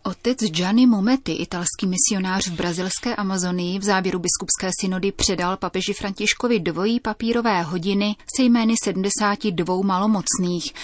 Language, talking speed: Czech, 120 wpm